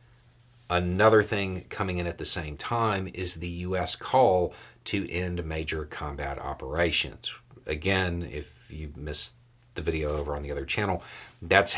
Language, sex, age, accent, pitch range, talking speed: English, male, 40-59, American, 85-120 Hz, 150 wpm